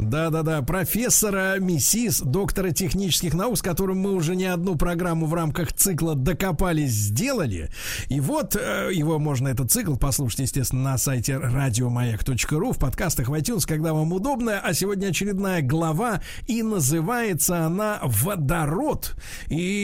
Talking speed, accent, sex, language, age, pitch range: 130 wpm, native, male, Russian, 50-69, 150-195 Hz